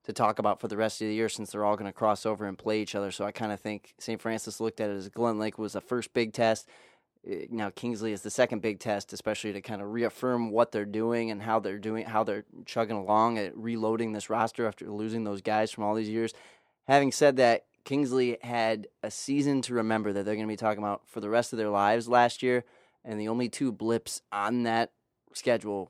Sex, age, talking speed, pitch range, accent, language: male, 20-39, 245 wpm, 105-115 Hz, American, English